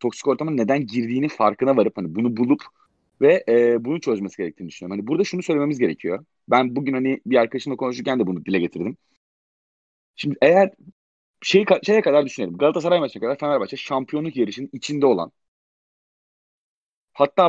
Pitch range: 130-180 Hz